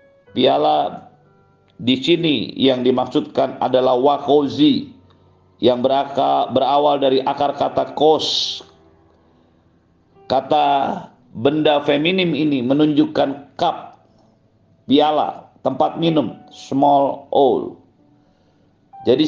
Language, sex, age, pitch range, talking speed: Indonesian, male, 50-69, 130-155 Hz, 80 wpm